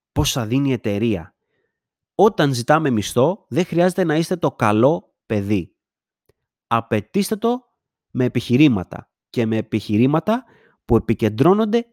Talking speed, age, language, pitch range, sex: 120 wpm, 30-49, Greek, 115-185 Hz, male